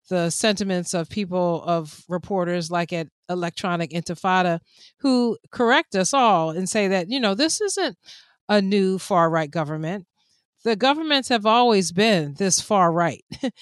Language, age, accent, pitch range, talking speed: English, 30-49, American, 175-225 Hz, 140 wpm